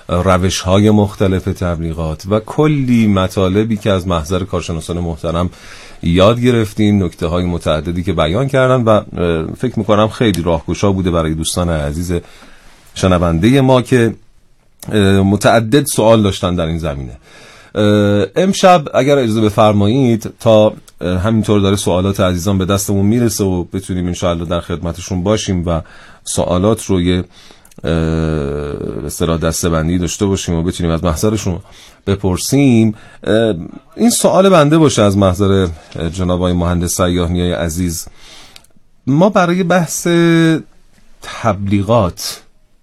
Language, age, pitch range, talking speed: Persian, 40-59, 85-110 Hz, 120 wpm